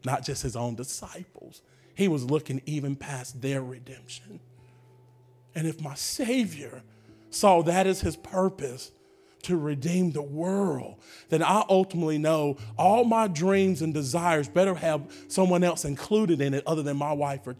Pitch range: 130-190 Hz